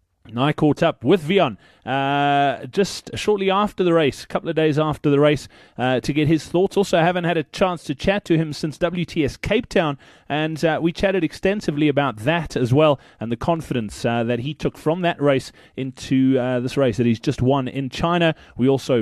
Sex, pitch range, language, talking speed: male, 135-185 Hz, English, 215 wpm